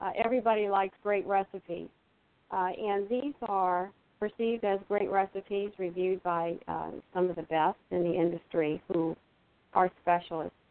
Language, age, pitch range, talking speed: English, 50-69, 180-220 Hz, 145 wpm